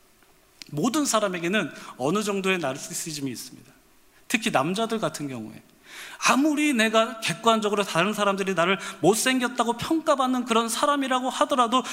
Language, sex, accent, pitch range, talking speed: English, male, Korean, 165-240 Hz, 105 wpm